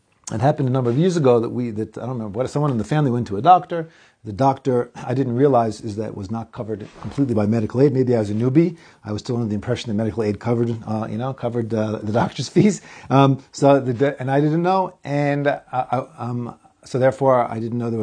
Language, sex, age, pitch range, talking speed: English, male, 40-59, 110-145 Hz, 255 wpm